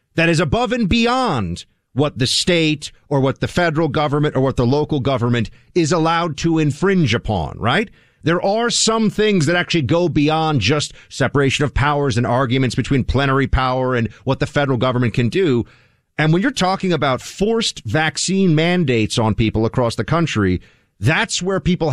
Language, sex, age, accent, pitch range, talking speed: English, male, 40-59, American, 125-170 Hz, 175 wpm